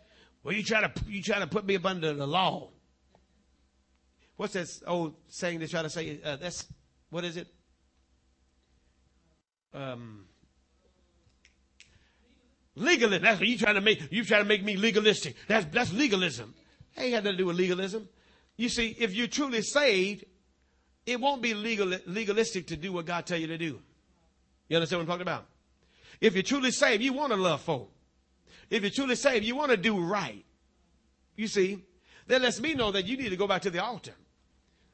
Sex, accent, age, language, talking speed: male, American, 50-69, English, 185 wpm